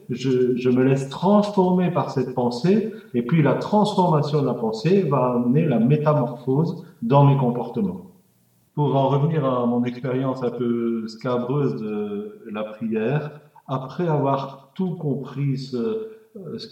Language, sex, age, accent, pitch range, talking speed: French, male, 40-59, French, 125-155 Hz, 145 wpm